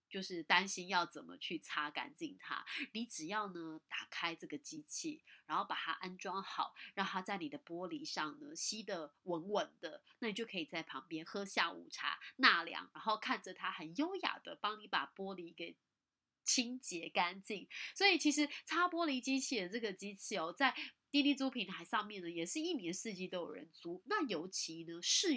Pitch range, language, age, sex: 180-265 Hz, Chinese, 30-49, female